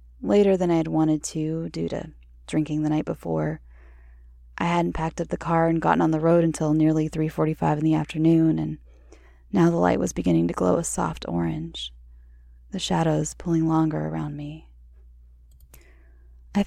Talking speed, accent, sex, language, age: 170 wpm, American, female, English, 20-39